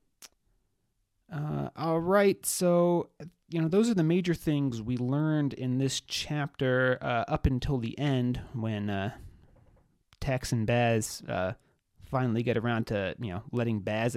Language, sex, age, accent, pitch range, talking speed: English, male, 30-49, American, 110-135 Hz, 150 wpm